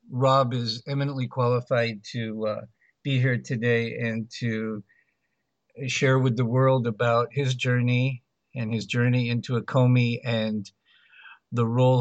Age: 50-69